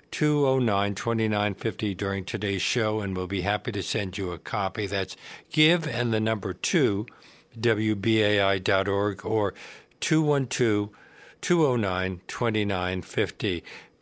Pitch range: 105-130 Hz